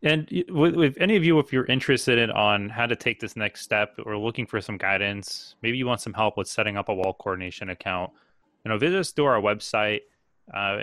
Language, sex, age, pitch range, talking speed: English, male, 20-39, 105-125 Hz, 225 wpm